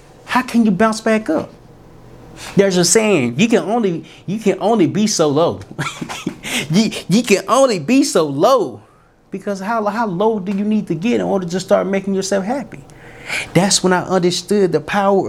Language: English